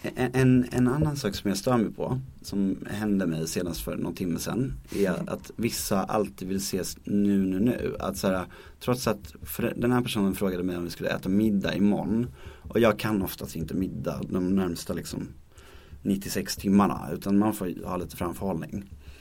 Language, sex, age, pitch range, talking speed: English, male, 30-49, 90-110 Hz, 185 wpm